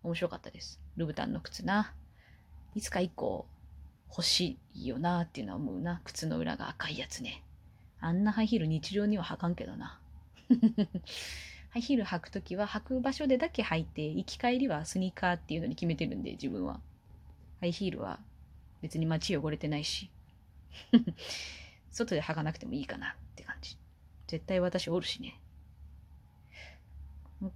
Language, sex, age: Japanese, female, 20-39